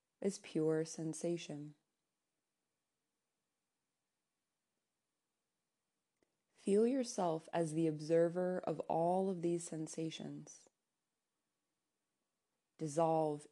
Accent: American